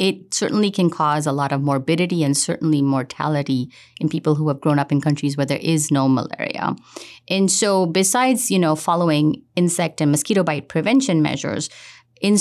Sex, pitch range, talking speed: female, 150-195 Hz, 180 wpm